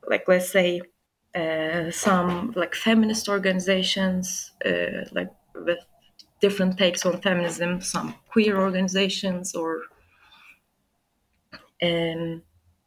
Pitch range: 180-220 Hz